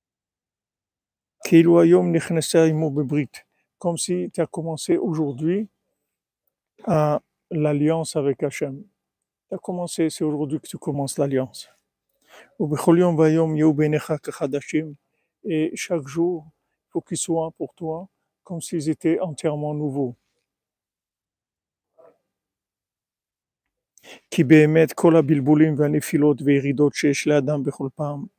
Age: 50-69